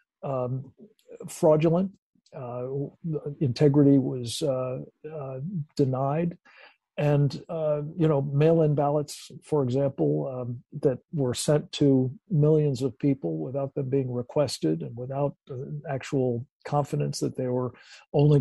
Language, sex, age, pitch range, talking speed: English, male, 50-69, 130-155 Hz, 125 wpm